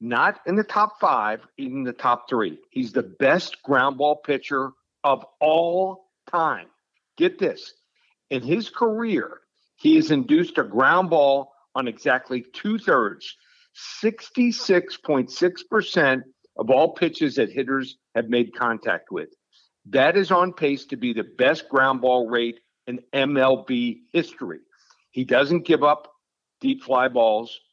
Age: 50-69